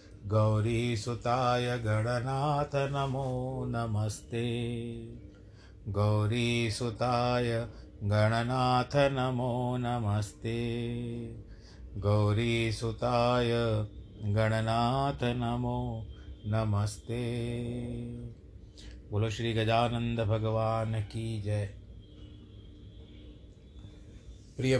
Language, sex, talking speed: Hindi, male, 55 wpm